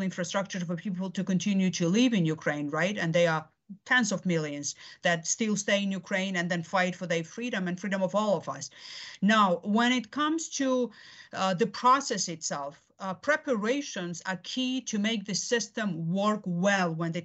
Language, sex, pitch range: English, female, 180-220 Hz